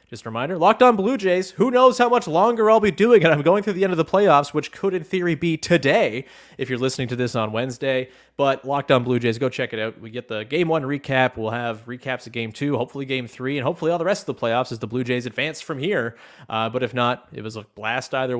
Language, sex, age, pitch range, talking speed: English, male, 20-39, 115-145 Hz, 275 wpm